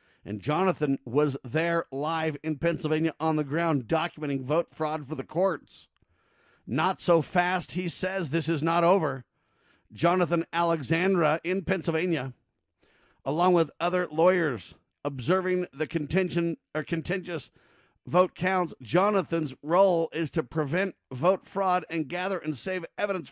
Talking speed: 135 wpm